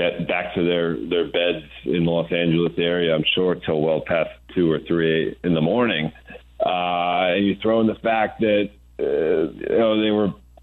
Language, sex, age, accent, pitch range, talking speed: English, male, 40-59, American, 85-110 Hz, 180 wpm